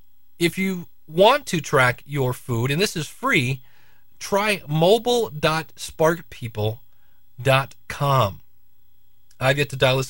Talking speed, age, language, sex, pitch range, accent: 105 wpm, 30-49, English, male, 115-155 Hz, American